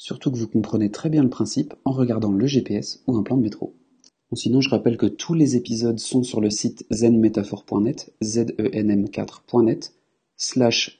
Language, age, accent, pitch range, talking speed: French, 30-49, French, 105-125 Hz, 170 wpm